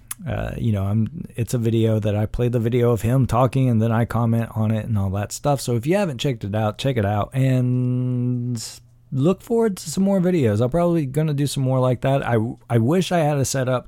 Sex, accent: male, American